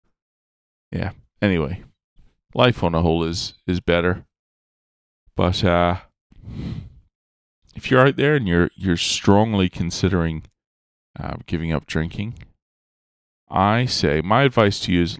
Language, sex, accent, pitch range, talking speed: English, male, American, 80-105 Hz, 120 wpm